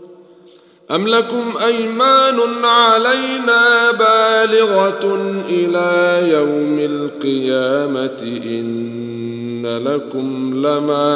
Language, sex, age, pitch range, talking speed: Arabic, male, 40-59, 165-235 Hz, 60 wpm